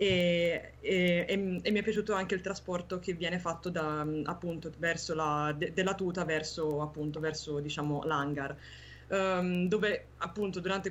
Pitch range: 165-195 Hz